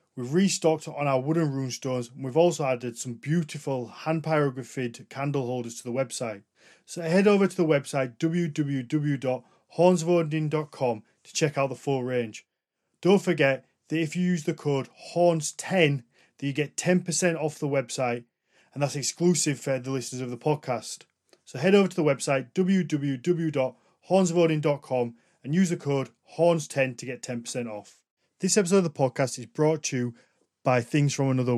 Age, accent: 30-49, British